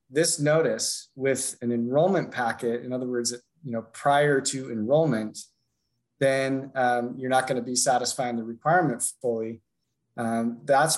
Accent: American